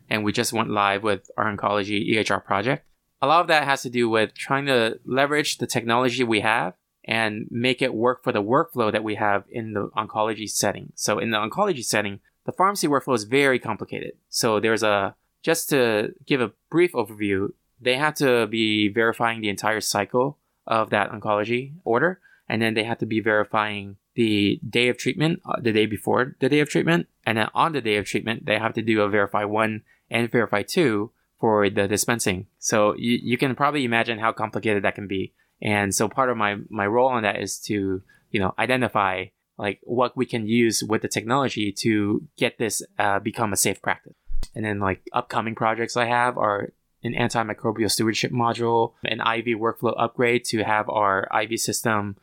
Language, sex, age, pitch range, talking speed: English, male, 20-39, 105-125 Hz, 195 wpm